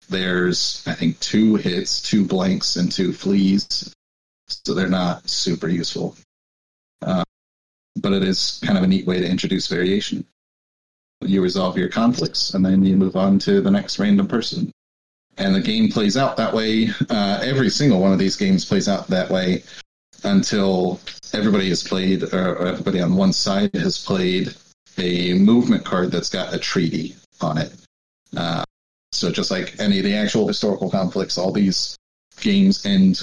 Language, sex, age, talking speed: English, male, 30-49, 170 wpm